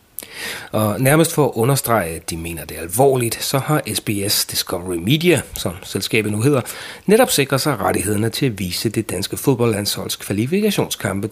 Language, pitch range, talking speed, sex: Danish, 90-120 Hz, 165 wpm, male